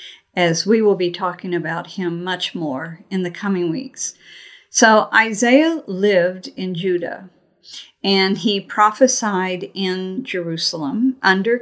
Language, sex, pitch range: English, female, 175-220 Hz